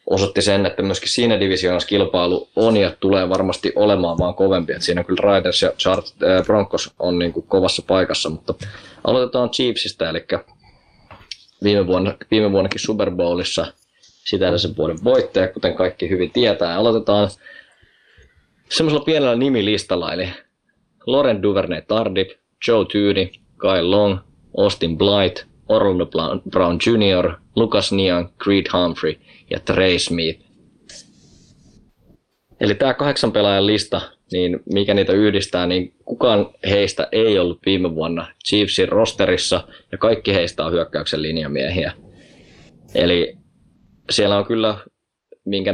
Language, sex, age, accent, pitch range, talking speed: Finnish, male, 20-39, native, 90-105 Hz, 125 wpm